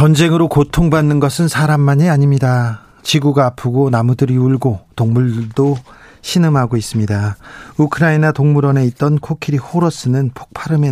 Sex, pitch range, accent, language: male, 120-150 Hz, native, Korean